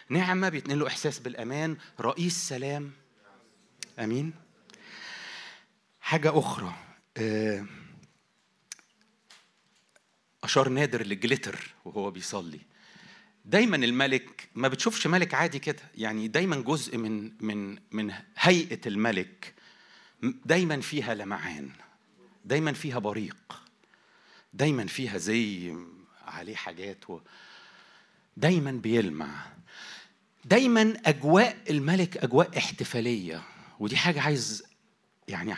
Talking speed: 90 wpm